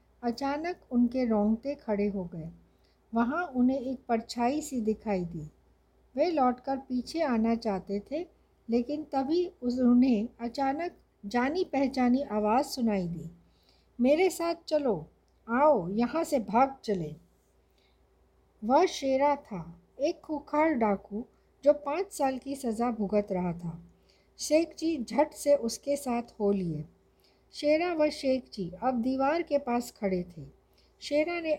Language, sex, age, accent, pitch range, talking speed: Hindi, female, 60-79, native, 210-285 Hz, 135 wpm